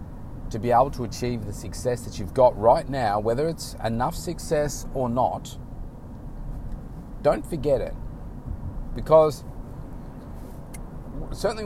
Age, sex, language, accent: 40-59, male, English, Australian